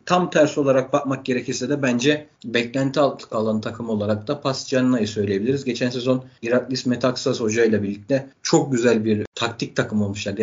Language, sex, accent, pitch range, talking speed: Turkish, male, native, 110-135 Hz, 160 wpm